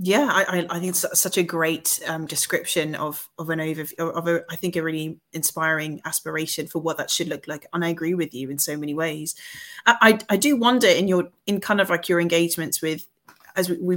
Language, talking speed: English, 230 wpm